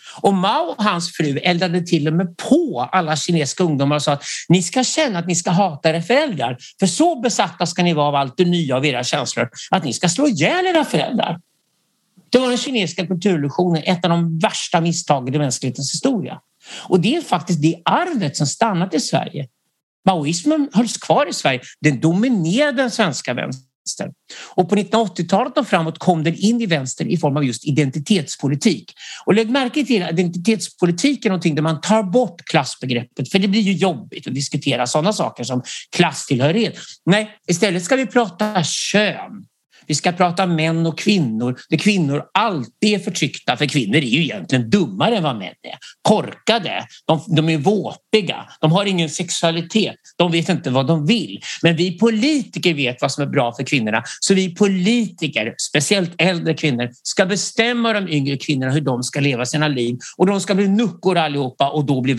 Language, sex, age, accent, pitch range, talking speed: English, male, 50-69, Swedish, 150-205 Hz, 185 wpm